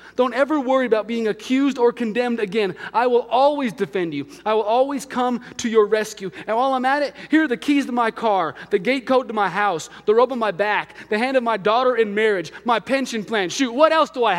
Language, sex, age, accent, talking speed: English, male, 30-49, American, 245 wpm